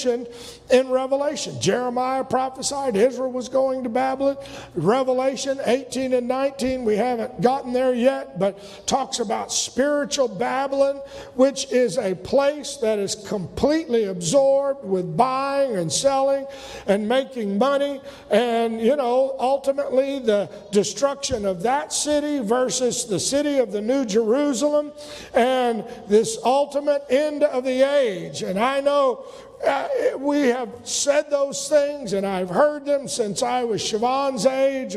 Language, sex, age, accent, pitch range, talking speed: English, male, 50-69, American, 225-275 Hz, 135 wpm